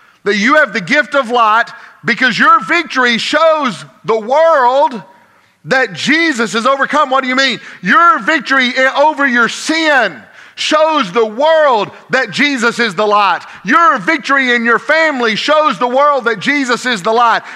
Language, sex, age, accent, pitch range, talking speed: English, male, 50-69, American, 180-285 Hz, 160 wpm